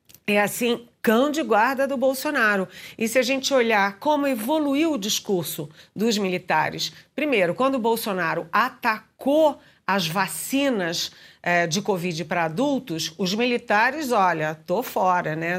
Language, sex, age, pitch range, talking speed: Portuguese, female, 50-69, 180-250 Hz, 135 wpm